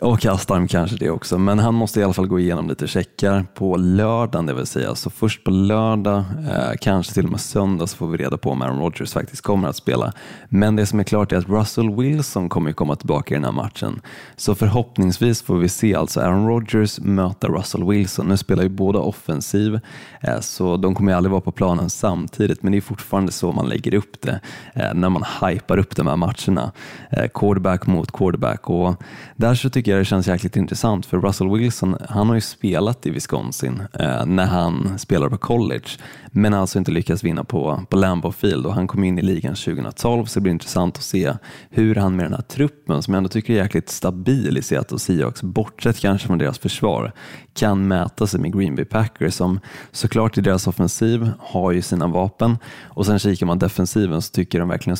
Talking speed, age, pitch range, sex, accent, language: 215 wpm, 20-39, 90-110 Hz, male, native, Swedish